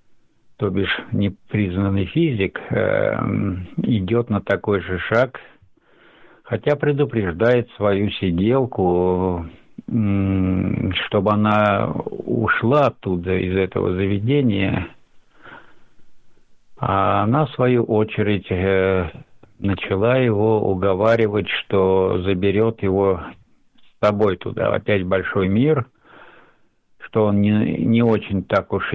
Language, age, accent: Russian, 60-79, native